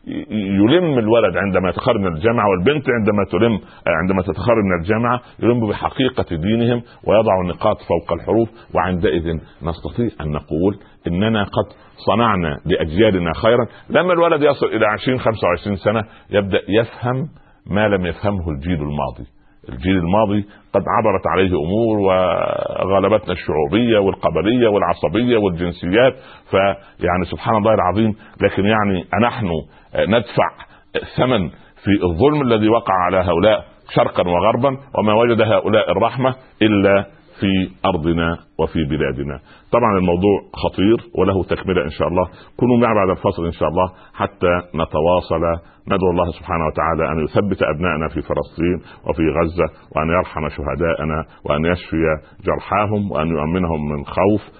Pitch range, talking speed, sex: 85-110 Hz, 130 wpm, male